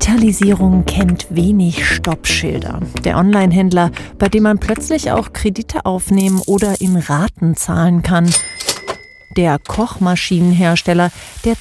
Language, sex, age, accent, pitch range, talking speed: German, female, 40-59, German, 180-240 Hz, 110 wpm